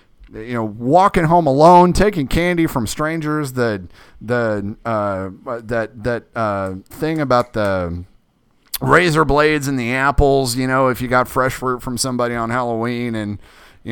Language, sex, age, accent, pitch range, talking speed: English, male, 30-49, American, 105-135 Hz, 155 wpm